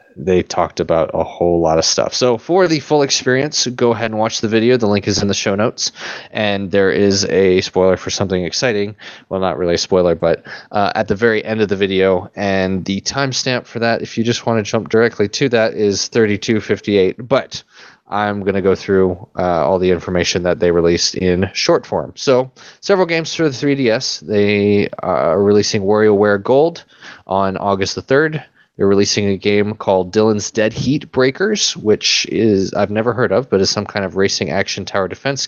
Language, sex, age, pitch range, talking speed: English, male, 20-39, 95-120 Hz, 200 wpm